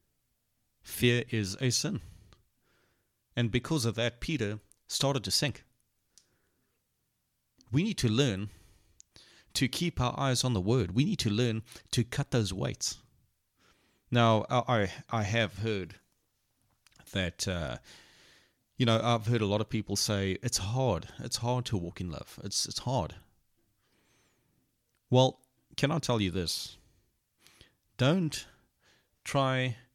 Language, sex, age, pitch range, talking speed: English, male, 30-49, 100-125 Hz, 130 wpm